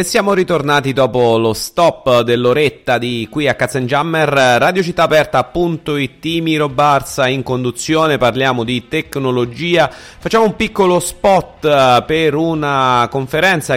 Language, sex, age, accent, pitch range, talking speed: Italian, male, 30-49, native, 115-150 Hz, 125 wpm